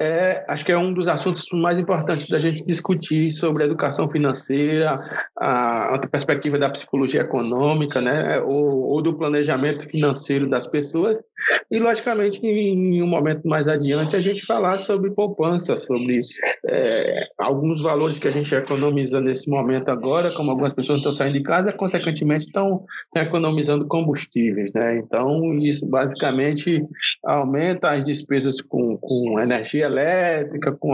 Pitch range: 140-175 Hz